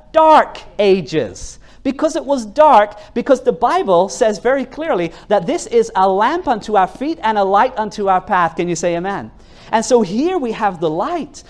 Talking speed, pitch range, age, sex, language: 195 wpm, 190-255 Hz, 40-59, male, English